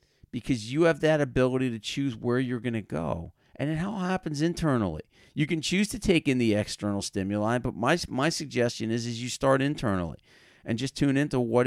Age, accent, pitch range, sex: 40-59, American, 105-130 Hz, male